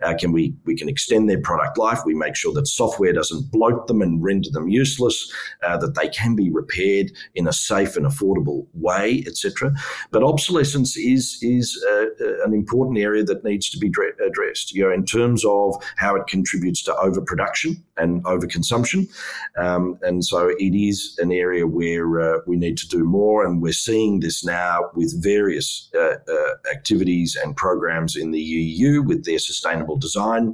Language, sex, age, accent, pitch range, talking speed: English, male, 40-59, Australian, 90-135 Hz, 185 wpm